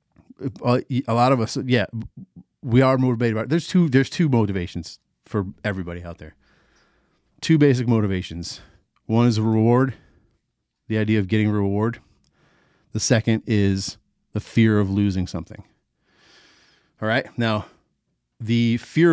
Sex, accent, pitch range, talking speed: male, American, 100-120 Hz, 140 wpm